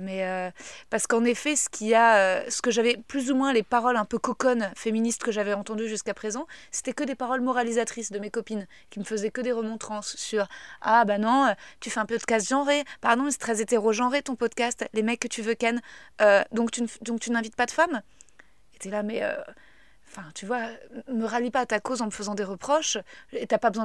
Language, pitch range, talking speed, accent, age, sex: French, 220-260 Hz, 245 wpm, French, 20-39, female